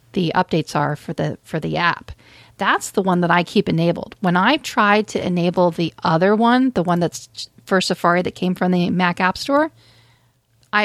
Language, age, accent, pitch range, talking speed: English, 40-59, American, 170-200 Hz, 200 wpm